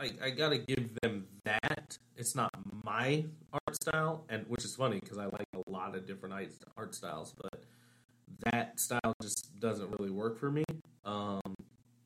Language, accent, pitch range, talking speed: English, American, 105-130 Hz, 170 wpm